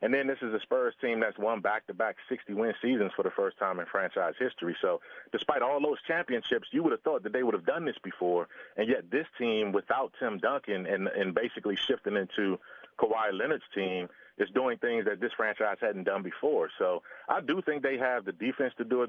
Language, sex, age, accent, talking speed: English, male, 30-49, American, 220 wpm